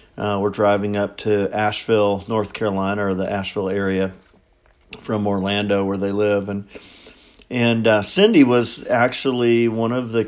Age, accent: 50-69, American